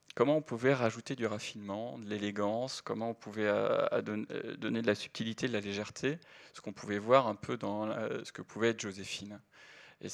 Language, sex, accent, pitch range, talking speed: French, male, French, 105-125 Hz, 195 wpm